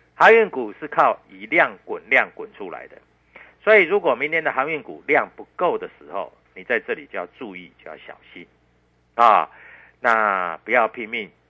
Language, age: Chinese, 50-69